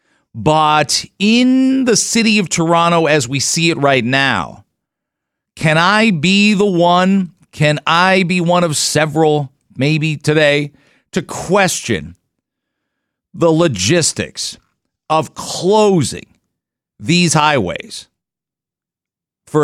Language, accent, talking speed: English, American, 105 wpm